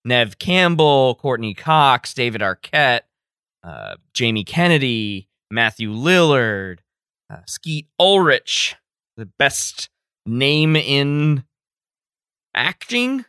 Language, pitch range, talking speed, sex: English, 110-150 Hz, 85 wpm, male